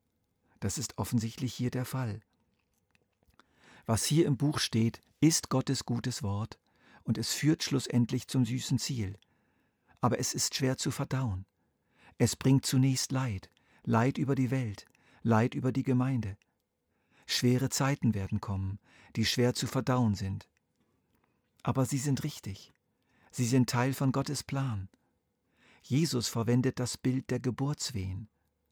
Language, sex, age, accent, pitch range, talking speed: German, male, 50-69, German, 105-130 Hz, 135 wpm